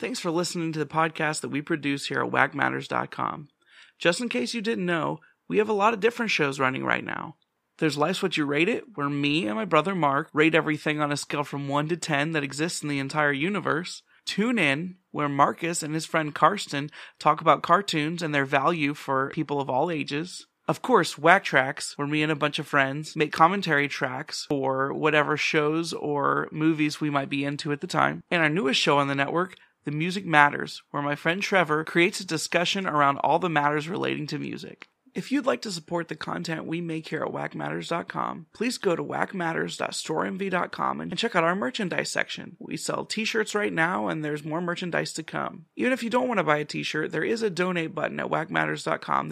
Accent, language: American, English